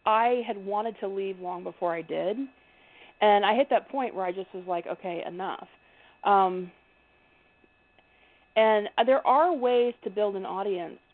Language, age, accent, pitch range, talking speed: English, 40-59, American, 200-285 Hz, 160 wpm